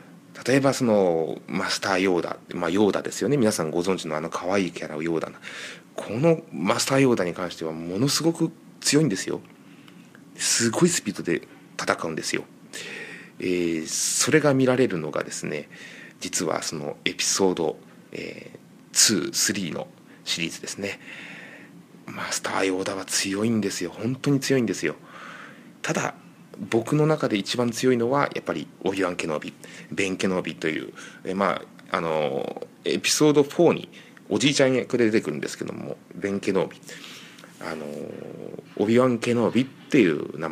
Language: Japanese